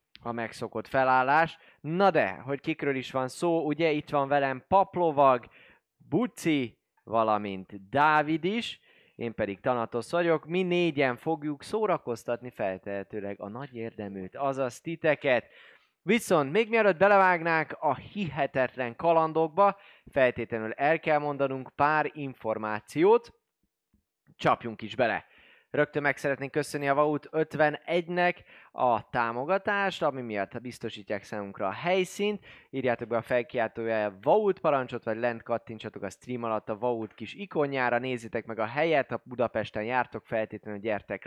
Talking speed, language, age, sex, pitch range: 130 wpm, Hungarian, 20-39, male, 115-155 Hz